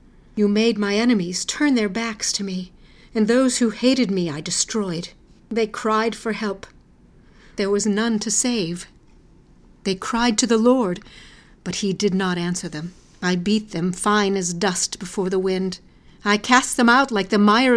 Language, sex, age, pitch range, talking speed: English, female, 50-69, 190-235 Hz, 175 wpm